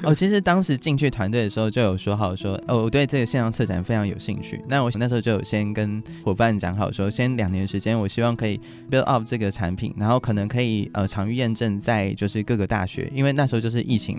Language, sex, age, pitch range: Chinese, male, 20-39, 100-120 Hz